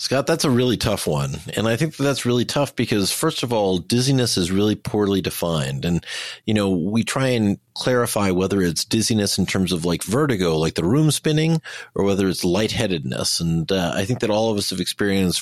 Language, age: English, 40-59